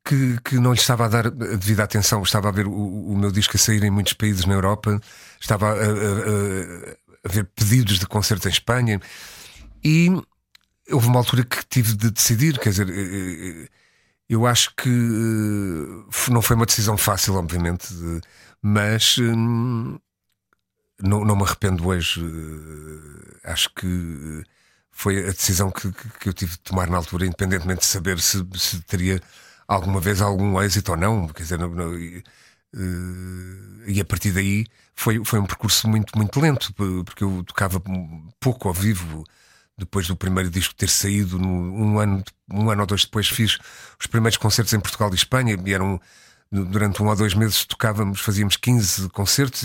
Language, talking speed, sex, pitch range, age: Portuguese, 170 wpm, male, 95-115 Hz, 50-69